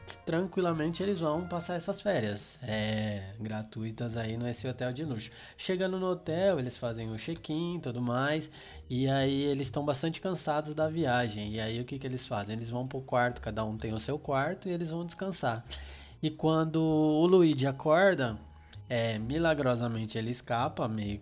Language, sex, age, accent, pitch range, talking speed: Portuguese, male, 20-39, Brazilian, 115-150 Hz, 180 wpm